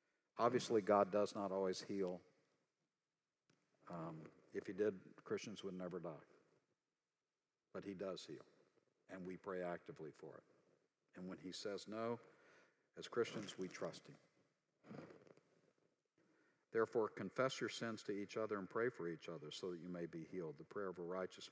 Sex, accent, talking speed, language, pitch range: male, American, 160 wpm, English, 95-110 Hz